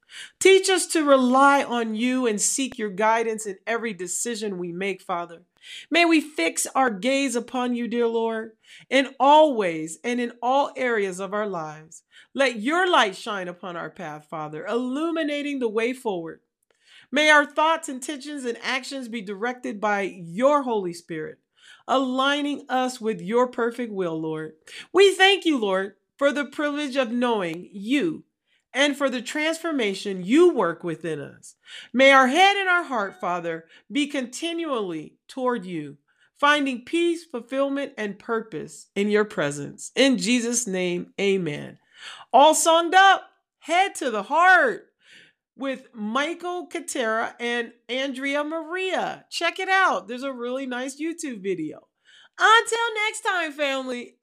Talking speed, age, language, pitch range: 145 wpm, 40-59, English, 210-310 Hz